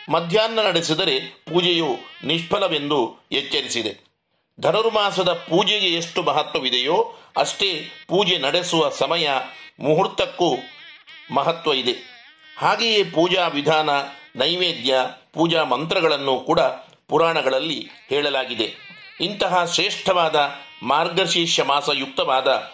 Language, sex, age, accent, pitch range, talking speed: Kannada, male, 50-69, native, 145-195 Hz, 75 wpm